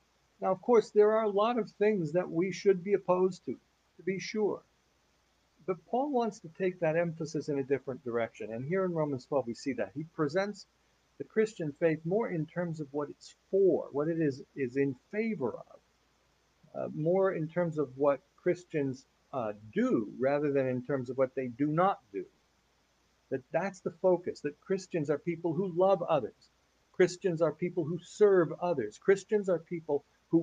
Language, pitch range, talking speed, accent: English, 145-190 Hz, 190 wpm, American